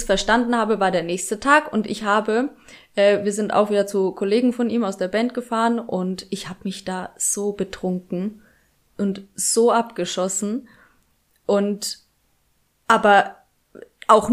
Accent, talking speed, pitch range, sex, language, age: German, 145 wpm, 205-255 Hz, female, German, 20-39